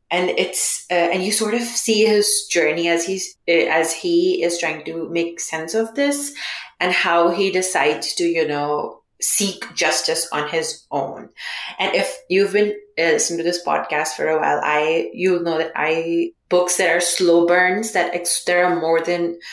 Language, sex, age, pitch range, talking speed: English, female, 30-49, 165-220 Hz, 190 wpm